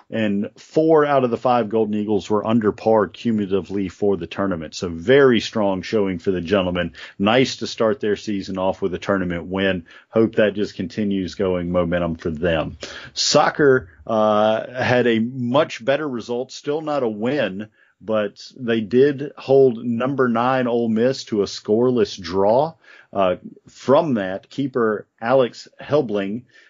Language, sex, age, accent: English, male, 40-59, American